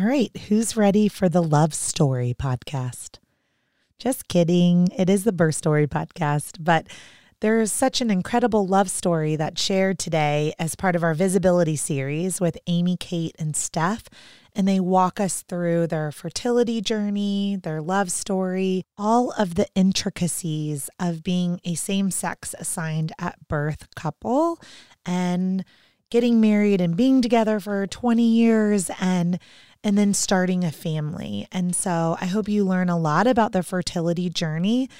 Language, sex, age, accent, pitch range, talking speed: English, female, 30-49, American, 165-205 Hz, 150 wpm